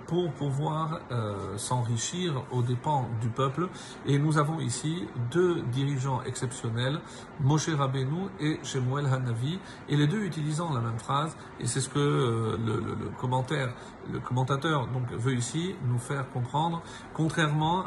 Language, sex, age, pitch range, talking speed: French, male, 50-69, 125-150 Hz, 150 wpm